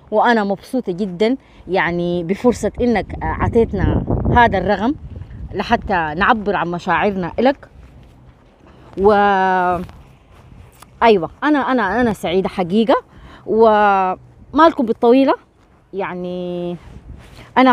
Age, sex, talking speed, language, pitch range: 20-39, female, 85 wpm, Arabic, 180-240 Hz